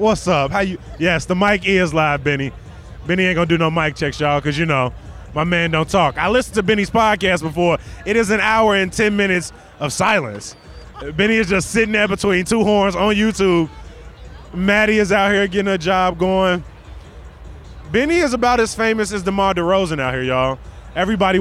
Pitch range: 145-200 Hz